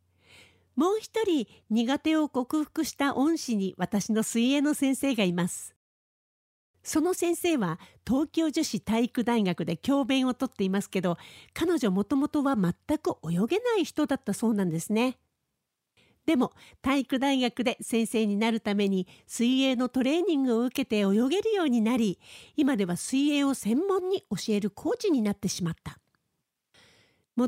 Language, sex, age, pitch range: Japanese, female, 50-69, 210-290 Hz